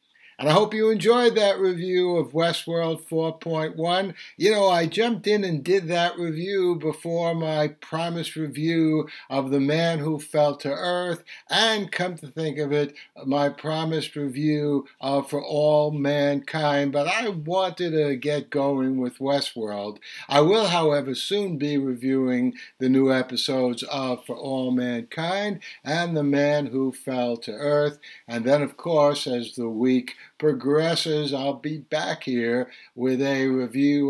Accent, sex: American, male